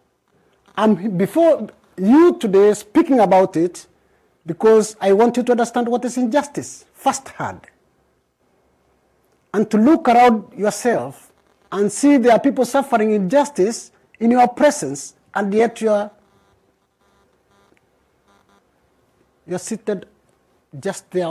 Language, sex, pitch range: English, male, 175-225 Hz